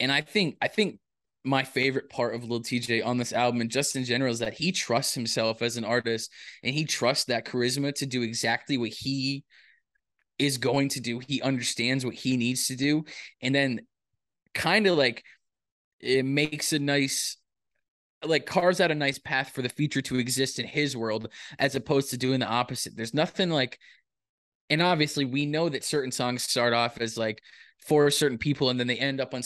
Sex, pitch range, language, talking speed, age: male, 120-140 Hz, English, 205 wpm, 20-39